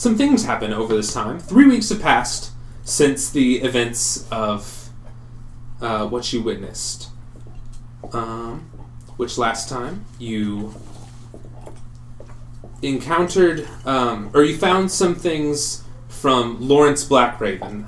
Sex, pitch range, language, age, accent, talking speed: male, 115-130 Hz, English, 30-49, American, 110 wpm